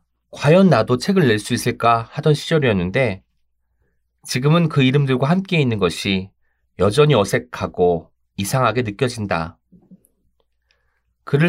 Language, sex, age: Korean, male, 30-49